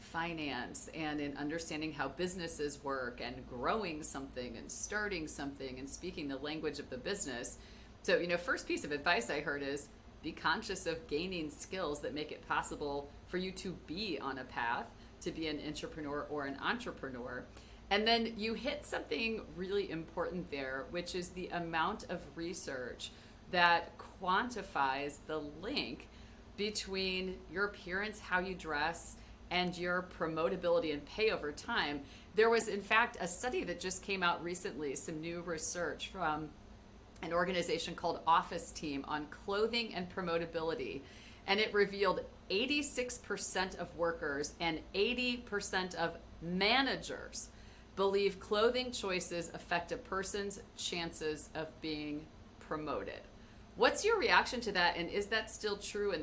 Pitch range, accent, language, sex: 150-200 Hz, American, English, female